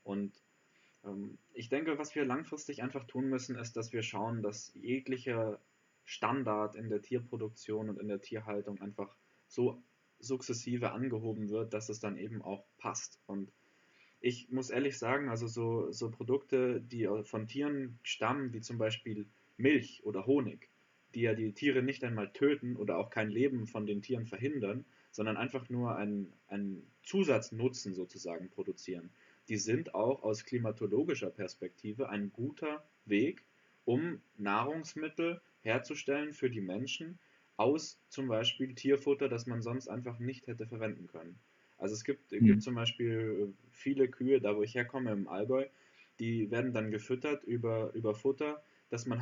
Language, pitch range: German, 105-130 Hz